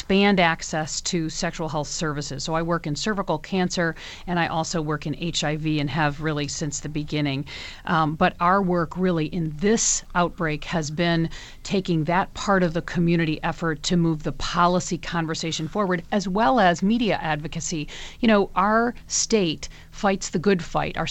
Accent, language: American, English